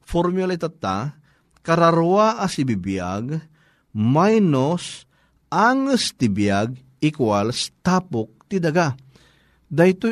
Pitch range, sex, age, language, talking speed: 130-170 Hz, male, 40-59, Filipino, 60 wpm